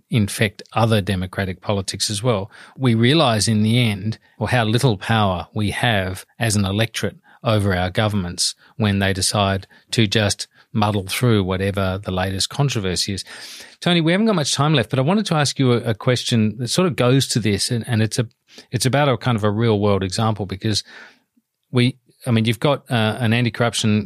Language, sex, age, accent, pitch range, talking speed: English, male, 40-59, Australian, 100-120 Hz, 195 wpm